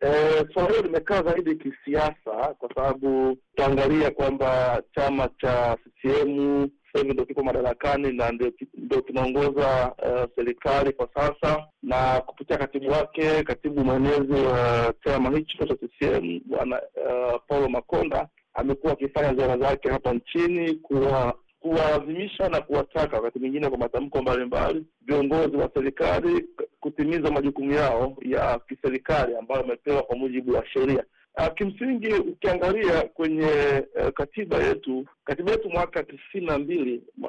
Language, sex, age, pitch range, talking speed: Swahili, male, 50-69, 130-165 Hz, 125 wpm